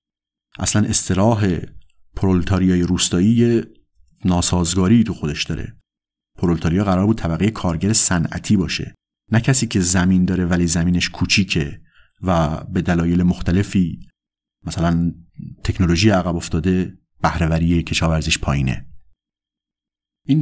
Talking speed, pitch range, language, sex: 105 wpm, 85-105 Hz, Persian, male